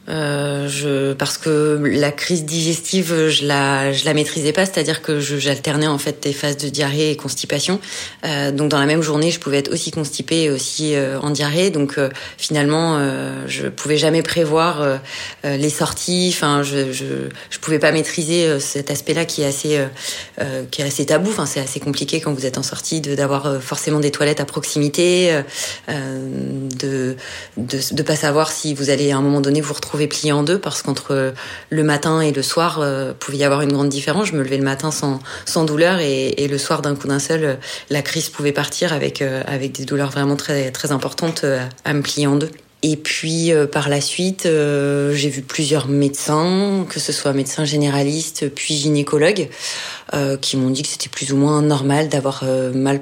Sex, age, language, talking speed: female, 30-49, French, 210 wpm